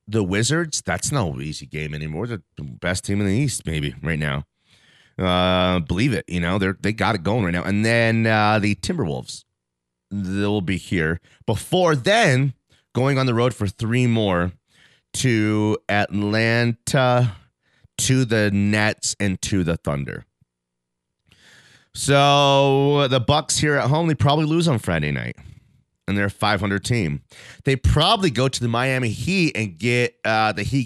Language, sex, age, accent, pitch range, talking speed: English, male, 30-49, American, 95-135 Hz, 150 wpm